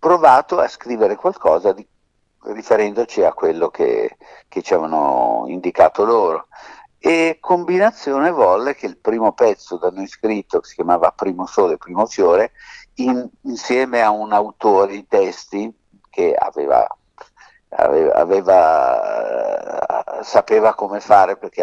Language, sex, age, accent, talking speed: Italian, male, 60-79, native, 130 wpm